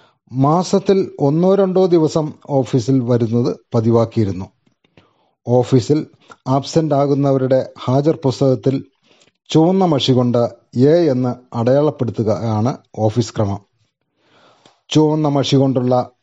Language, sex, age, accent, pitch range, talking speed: Malayalam, male, 30-49, native, 125-160 Hz, 80 wpm